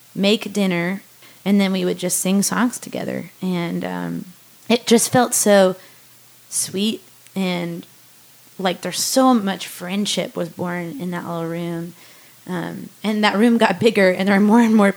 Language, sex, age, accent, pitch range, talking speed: English, female, 20-39, American, 180-215 Hz, 165 wpm